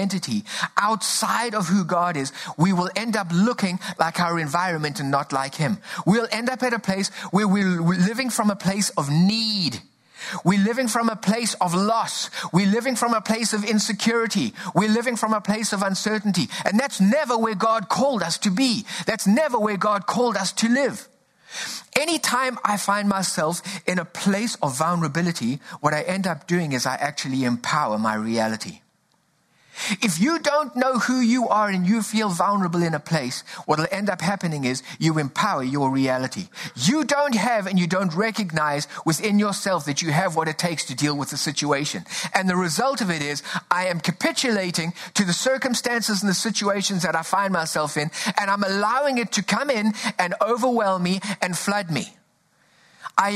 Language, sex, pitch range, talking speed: English, male, 165-220 Hz, 190 wpm